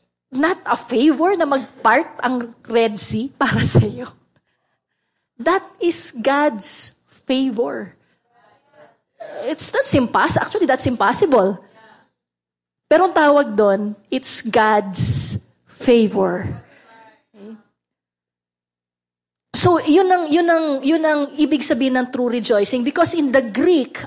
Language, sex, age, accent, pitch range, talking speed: English, female, 20-39, Filipino, 220-295 Hz, 115 wpm